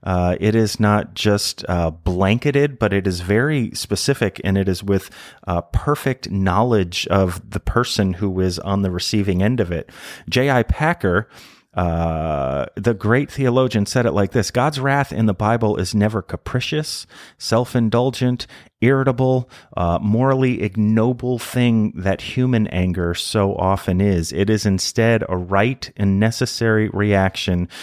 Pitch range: 95-115 Hz